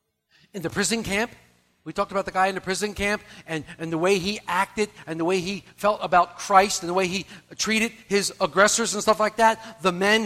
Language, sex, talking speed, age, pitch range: English, male, 230 wpm, 50-69, 185-250 Hz